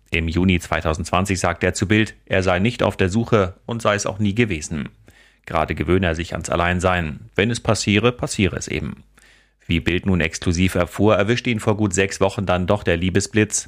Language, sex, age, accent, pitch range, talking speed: German, male, 30-49, German, 90-105 Hz, 200 wpm